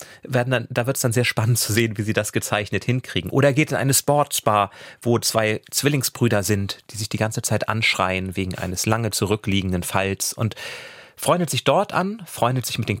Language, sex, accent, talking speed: German, male, German, 210 wpm